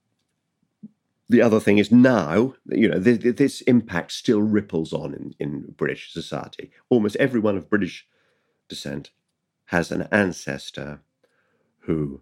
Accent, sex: British, male